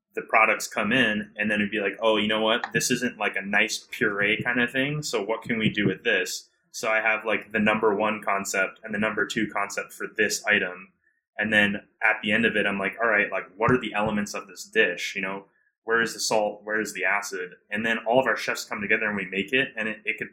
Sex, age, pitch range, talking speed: male, 20-39, 100-115 Hz, 265 wpm